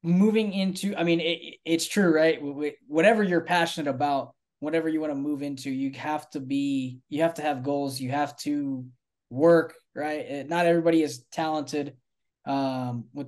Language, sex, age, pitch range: English, male, 10-29, 130-150 Hz